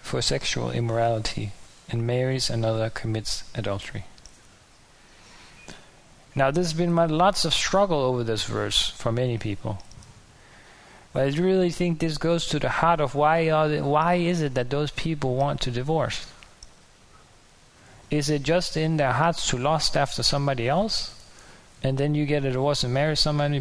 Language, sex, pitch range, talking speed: English, male, 110-150 Hz, 155 wpm